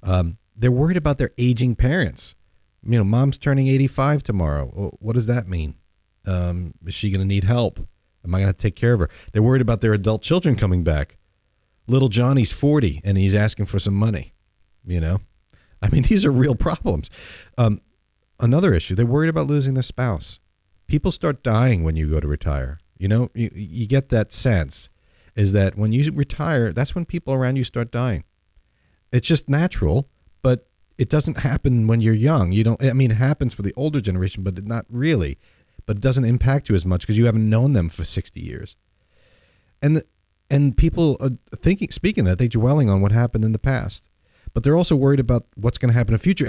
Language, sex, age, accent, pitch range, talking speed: English, male, 40-59, American, 95-135 Hz, 205 wpm